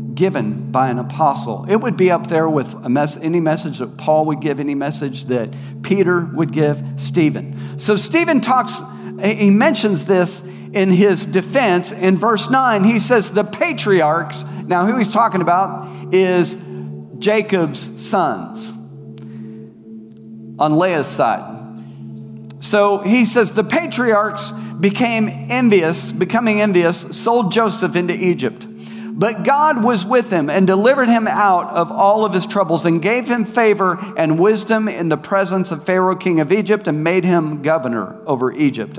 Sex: male